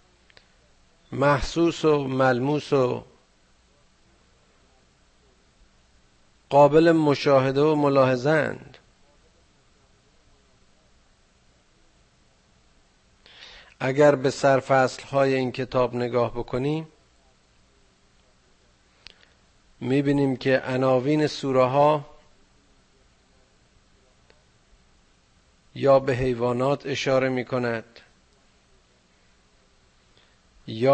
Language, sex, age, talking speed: Persian, male, 50-69, 50 wpm